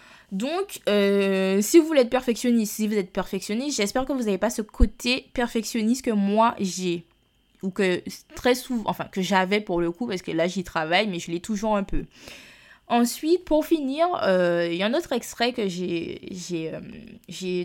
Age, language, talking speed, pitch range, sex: 20-39, French, 195 wpm, 180-240 Hz, female